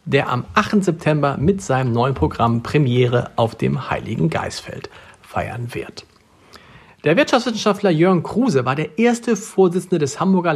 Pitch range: 130-175 Hz